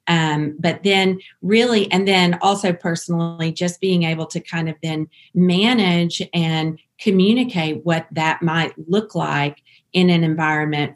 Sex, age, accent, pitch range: female, 40-59, American, 150-180 Hz